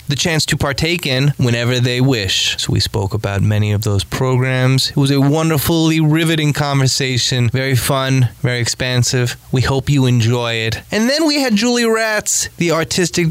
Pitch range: 120-155 Hz